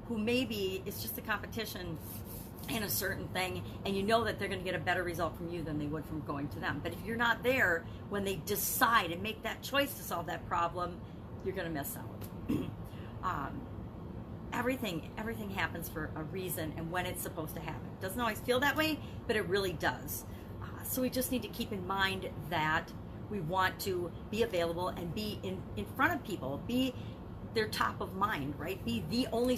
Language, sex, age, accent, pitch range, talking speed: English, female, 40-59, American, 145-230 Hz, 205 wpm